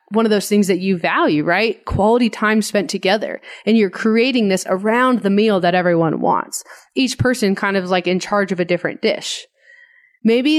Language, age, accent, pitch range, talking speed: English, 20-39, American, 180-225 Hz, 195 wpm